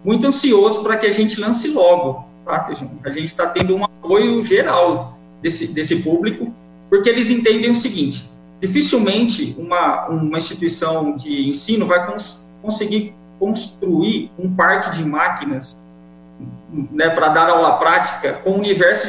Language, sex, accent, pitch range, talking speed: English, male, Brazilian, 155-210 Hz, 140 wpm